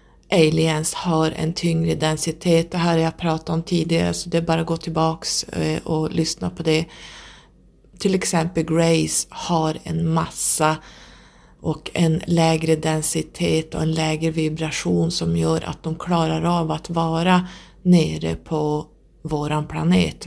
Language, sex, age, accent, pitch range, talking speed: Swedish, female, 30-49, native, 150-170 Hz, 145 wpm